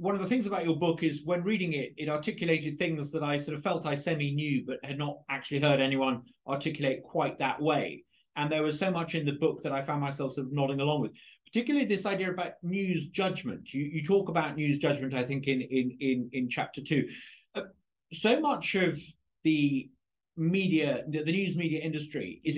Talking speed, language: 210 wpm, English